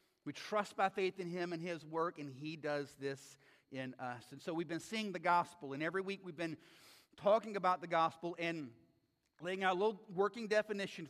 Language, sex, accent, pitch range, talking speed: English, male, American, 165-220 Hz, 205 wpm